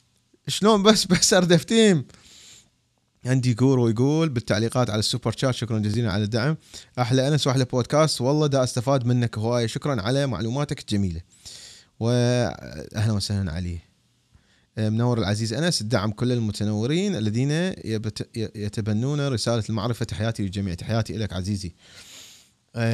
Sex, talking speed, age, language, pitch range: male, 125 wpm, 30-49, Arabic, 95-125 Hz